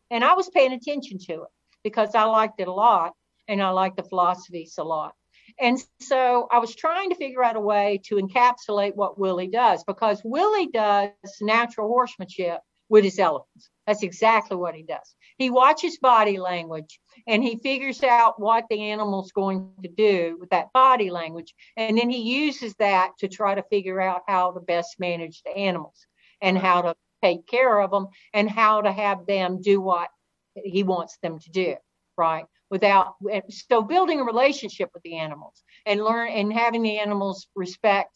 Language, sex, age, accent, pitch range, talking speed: English, female, 60-79, American, 185-230 Hz, 185 wpm